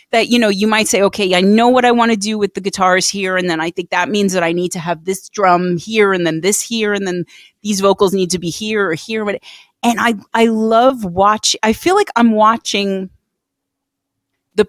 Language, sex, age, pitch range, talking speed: English, female, 30-49, 175-215 Hz, 235 wpm